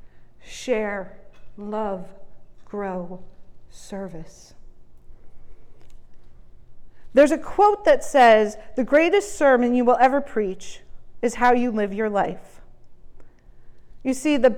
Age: 40-59